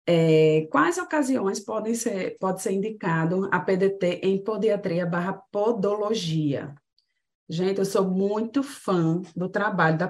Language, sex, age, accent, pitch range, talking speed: Portuguese, female, 20-39, Brazilian, 170-210 Hz, 130 wpm